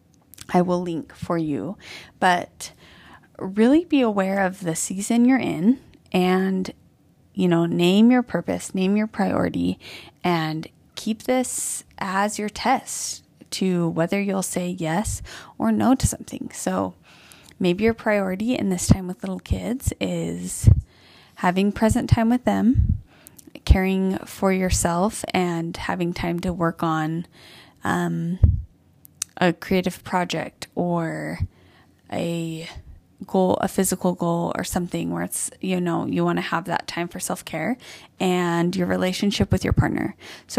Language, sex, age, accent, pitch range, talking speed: English, female, 20-39, American, 165-205 Hz, 140 wpm